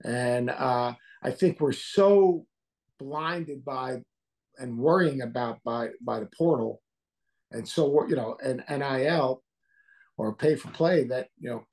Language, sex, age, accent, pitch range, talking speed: English, male, 50-69, American, 135-175 Hz, 145 wpm